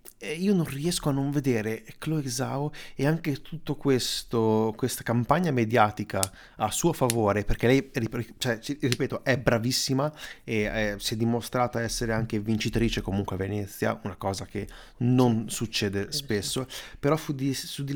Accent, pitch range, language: native, 110-135 Hz, Italian